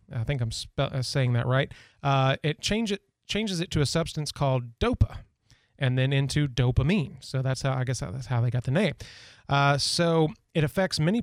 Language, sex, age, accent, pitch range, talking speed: English, male, 30-49, American, 125-155 Hz, 200 wpm